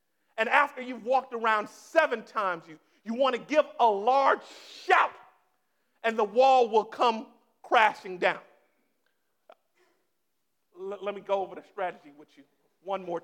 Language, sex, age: English, male, 50-69